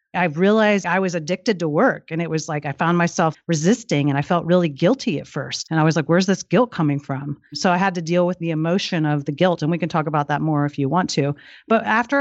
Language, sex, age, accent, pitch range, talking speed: English, female, 40-59, American, 155-200 Hz, 270 wpm